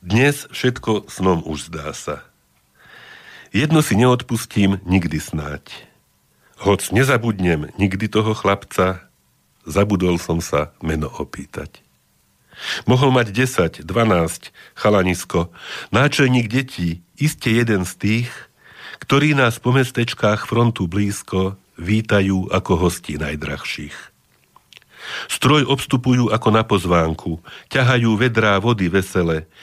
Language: Slovak